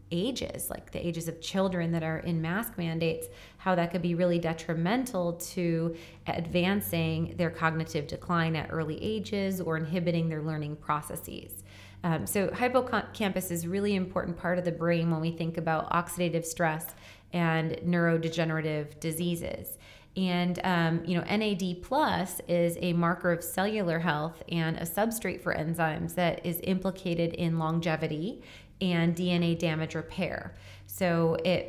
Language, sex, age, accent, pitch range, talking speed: English, female, 30-49, American, 165-185 Hz, 145 wpm